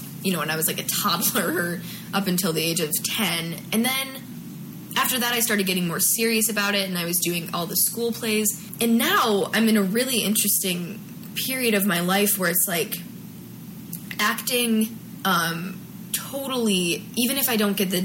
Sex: female